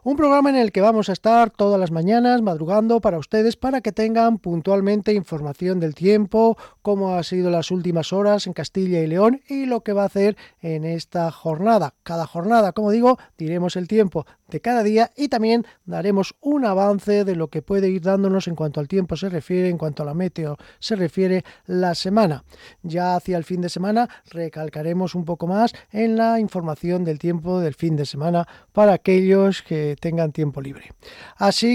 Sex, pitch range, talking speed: male, 170-220 Hz, 195 wpm